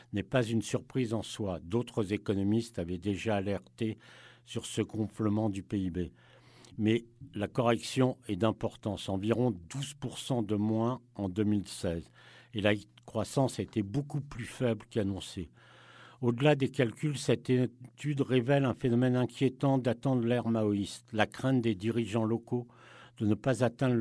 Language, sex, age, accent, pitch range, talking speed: French, male, 60-79, French, 105-125 Hz, 140 wpm